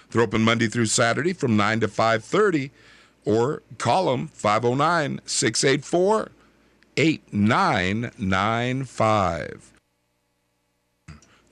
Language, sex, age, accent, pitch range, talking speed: English, male, 50-69, American, 110-155 Hz, 70 wpm